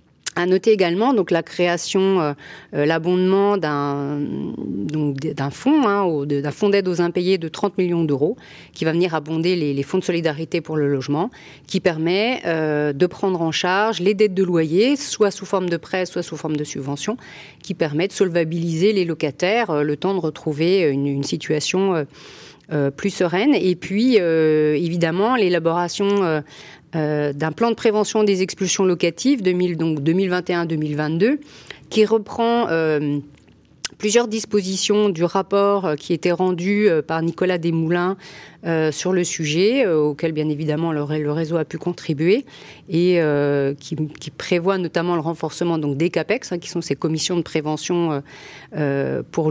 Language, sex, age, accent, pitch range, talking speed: French, female, 40-59, French, 155-195 Hz, 160 wpm